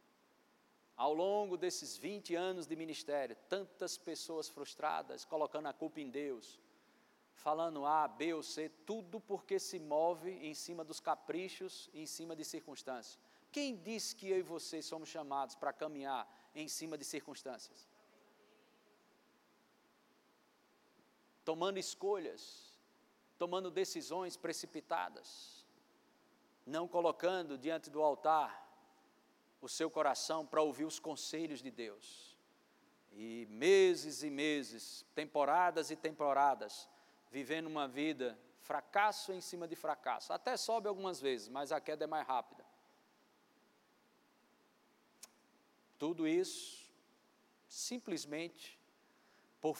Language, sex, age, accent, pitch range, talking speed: Portuguese, male, 50-69, Brazilian, 150-190 Hz, 115 wpm